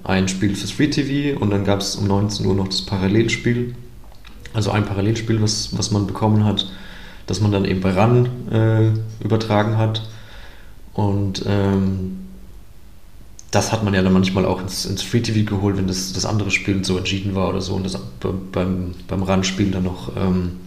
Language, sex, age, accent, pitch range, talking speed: German, male, 30-49, German, 95-115 Hz, 190 wpm